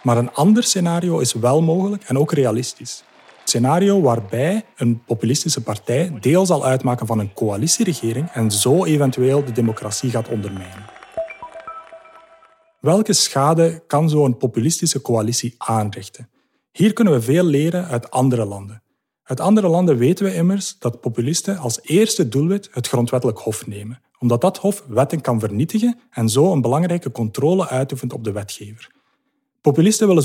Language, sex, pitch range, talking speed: Dutch, male, 120-175 Hz, 150 wpm